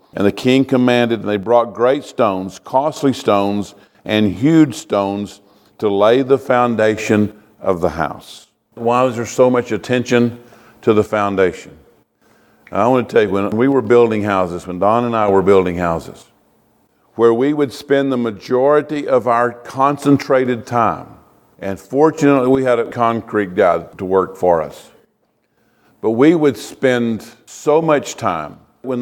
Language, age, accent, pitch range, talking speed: English, 50-69, American, 105-140 Hz, 155 wpm